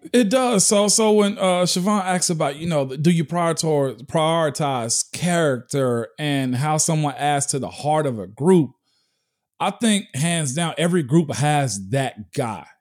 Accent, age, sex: American, 40-59, male